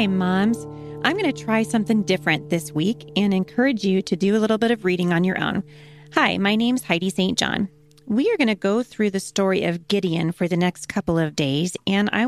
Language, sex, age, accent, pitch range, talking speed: English, female, 30-49, American, 170-215 Hz, 230 wpm